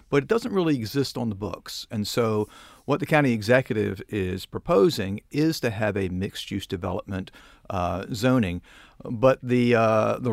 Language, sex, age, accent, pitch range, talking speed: English, male, 50-69, American, 95-120 Hz, 165 wpm